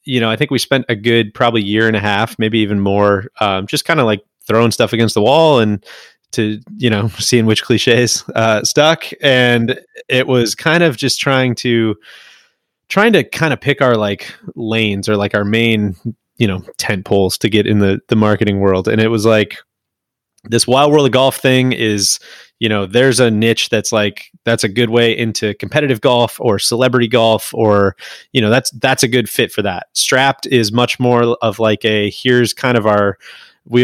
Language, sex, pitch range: English, male, 105-130 Hz